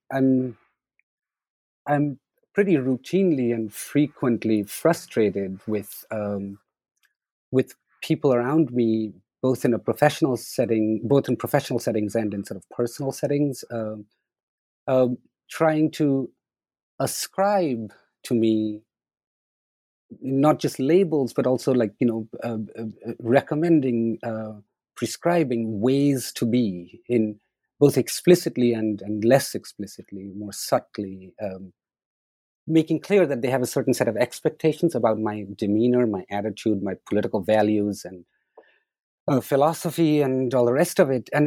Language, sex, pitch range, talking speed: English, male, 110-145 Hz, 130 wpm